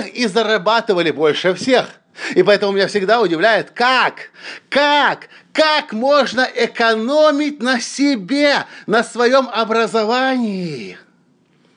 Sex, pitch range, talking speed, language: male, 185-230 Hz, 95 wpm, Russian